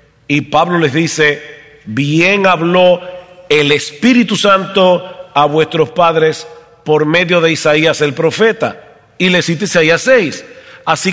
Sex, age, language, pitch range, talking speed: male, 50-69, English, 145-175 Hz, 130 wpm